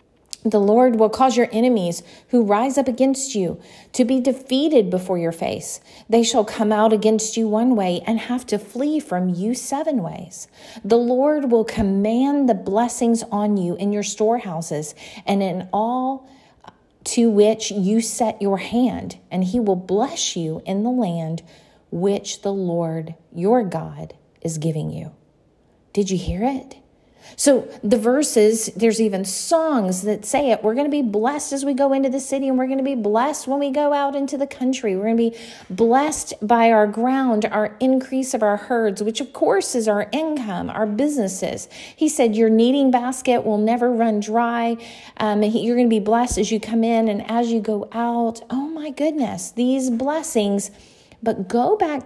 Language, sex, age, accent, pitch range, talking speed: English, female, 40-59, American, 205-255 Hz, 185 wpm